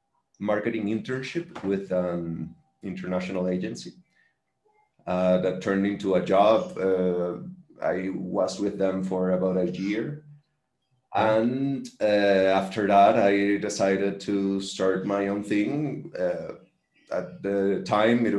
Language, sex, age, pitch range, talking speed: English, male, 30-49, 95-115 Hz, 120 wpm